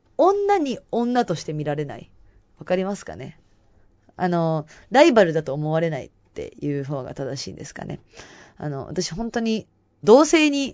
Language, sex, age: Japanese, female, 20-39